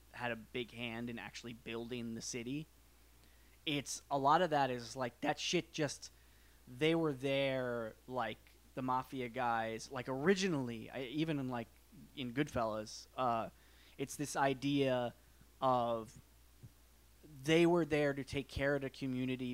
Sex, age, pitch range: male, 20-39, 105-135 Hz